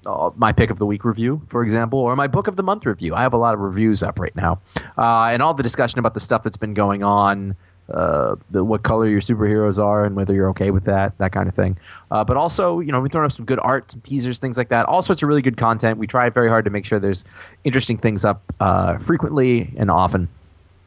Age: 20-39